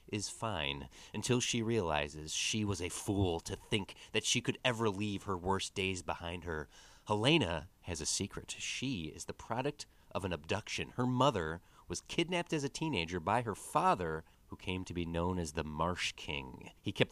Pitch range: 90-125 Hz